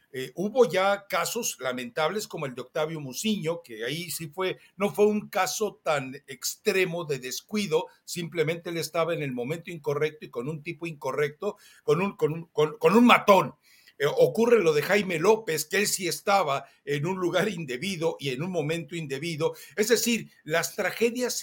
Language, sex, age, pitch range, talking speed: Spanish, male, 60-79, 155-215 Hz, 180 wpm